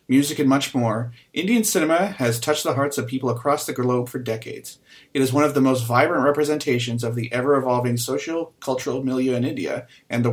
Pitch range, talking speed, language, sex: 120-145 Hz, 205 wpm, English, male